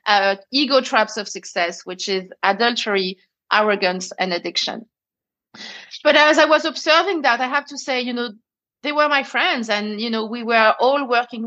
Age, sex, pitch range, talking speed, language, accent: 30-49, female, 205-260 Hz, 180 wpm, English, French